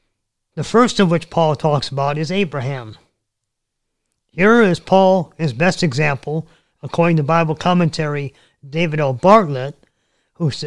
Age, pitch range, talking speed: 40-59, 140-175 Hz, 130 wpm